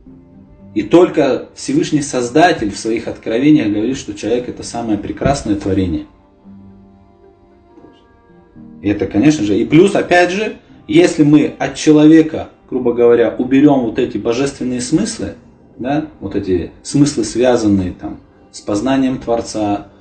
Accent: native